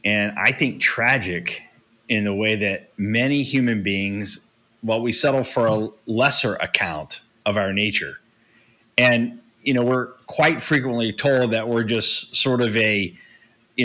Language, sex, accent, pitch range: English, male, American, 115-140 Hz